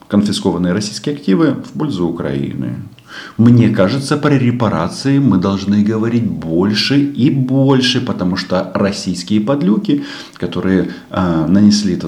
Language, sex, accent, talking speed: Russian, male, native, 115 wpm